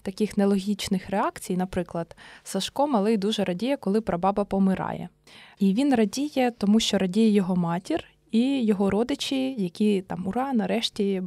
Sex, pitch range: female, 190-225 Hz